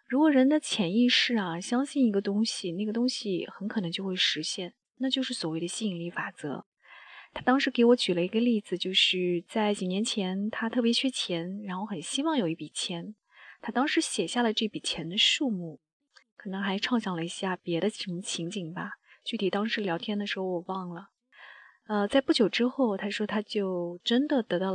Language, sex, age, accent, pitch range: Chinese, female, 20-39, native, 185-240 Hz